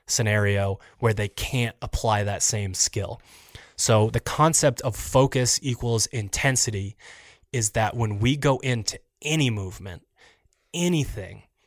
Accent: American